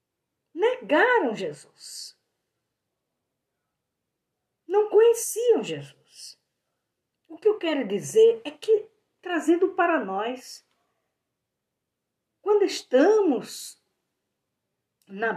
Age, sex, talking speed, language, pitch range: 50-69, female, 70 wpm, Portuguese, 255-410 Hz